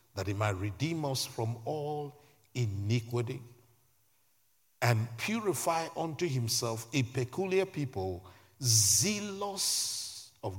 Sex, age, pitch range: male, 50-69, 115-165 Hz